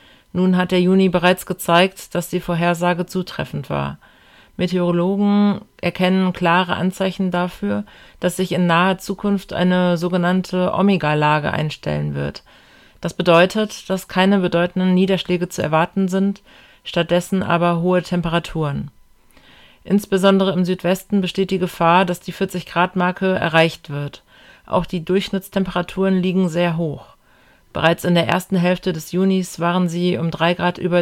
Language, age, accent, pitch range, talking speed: German, 40-59, German, 170-190 Hz, 135 wpm